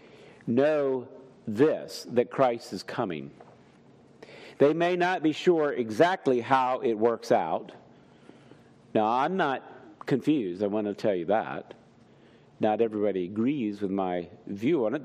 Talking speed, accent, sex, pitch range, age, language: 135 wpm, American, male, 120-165 Hz, 50-69, English